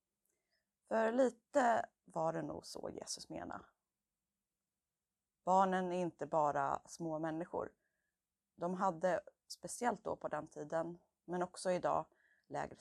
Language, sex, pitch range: Swedish, female, 145-180 Hz